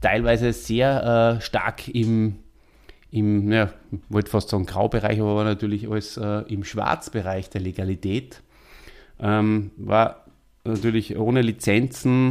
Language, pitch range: German, 105-125 Hz